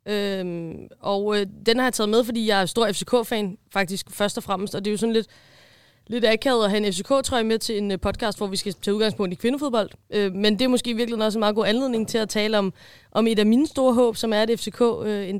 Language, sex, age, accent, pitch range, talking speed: Danish, female, 20-39, native, 185-215 Hz, 270 wpm